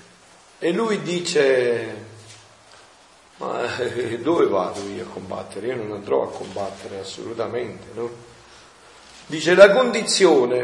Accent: native